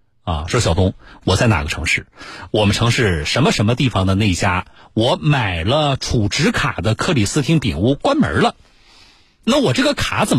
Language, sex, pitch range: Chinese, male, 100-140 Hz